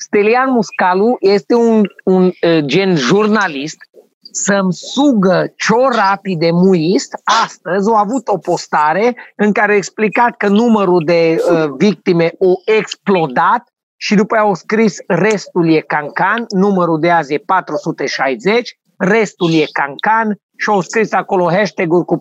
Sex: male